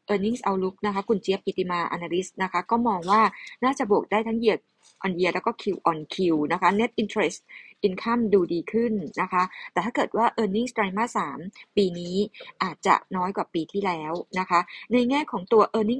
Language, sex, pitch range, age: Thai, female, 175-220 Hz, 20-39